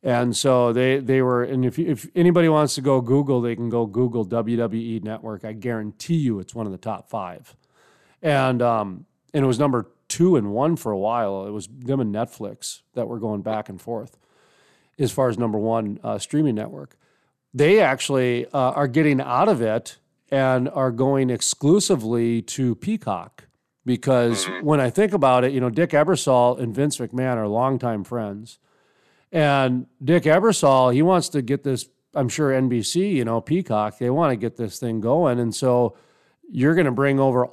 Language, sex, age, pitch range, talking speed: English, male, 40-59, 115-145 Hz, 190 wpm